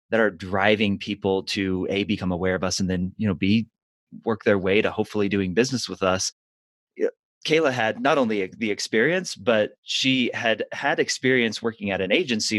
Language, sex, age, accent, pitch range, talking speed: English, male, 30-49, American, 95-110 Hz, 185 wpm